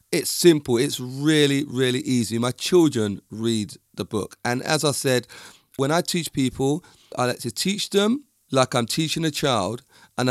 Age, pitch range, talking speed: 40-59, 125-160 Hz, 175 wpm